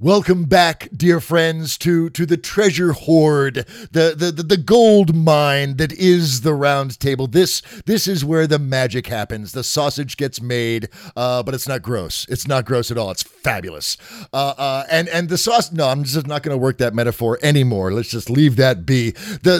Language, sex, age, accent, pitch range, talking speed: English, male, 50-69, American, 135-180 Hz, 195 wpm